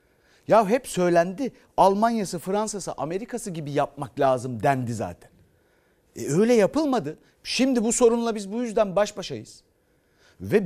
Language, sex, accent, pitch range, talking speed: Turkish, male, native, 150-225 Hz, 130 wpm